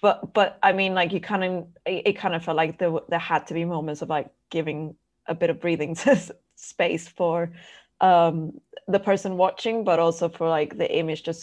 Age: 20-39